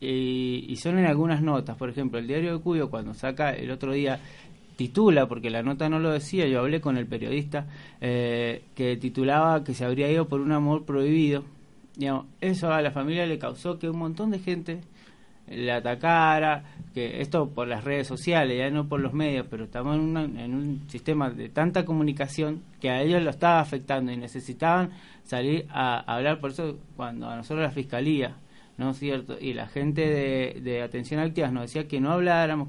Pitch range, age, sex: 125-160 Hz, 30-49, male